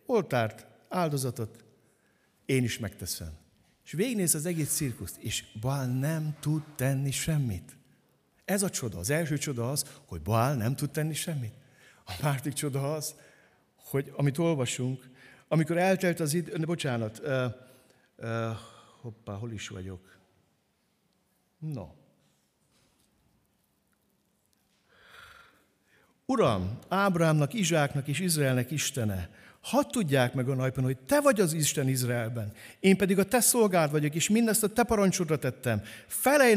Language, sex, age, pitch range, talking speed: Hungarian, male, 60-79, 120-165 Hz, 130 wpm